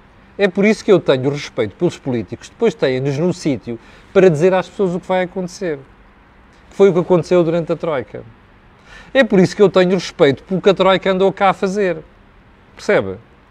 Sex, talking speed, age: male, 205 wpm, 40-59